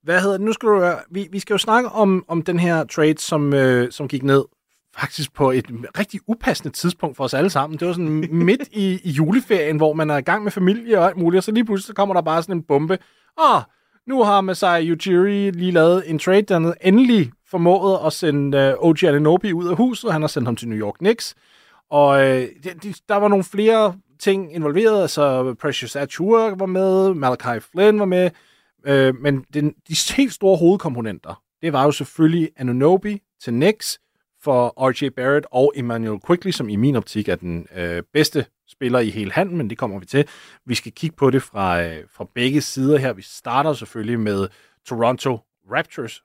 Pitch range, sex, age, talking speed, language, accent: 130-190 Hz, male, 30-49, 205 wpm, Danish, native